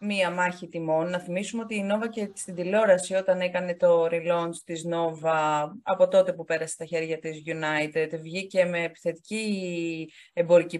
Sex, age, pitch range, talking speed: female, 30-49, 170-240 Hz, 160 wpm